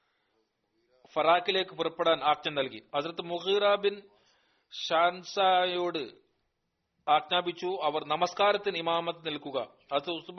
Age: 40-59